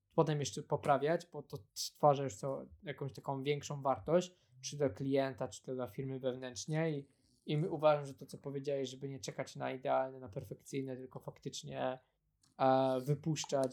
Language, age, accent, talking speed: Polish, 20-39, native, 160 wpm